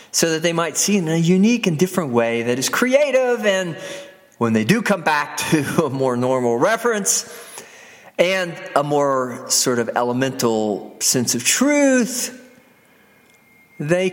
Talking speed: 150 wpm